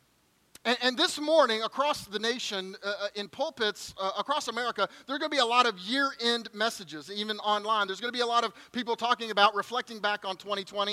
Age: 30-49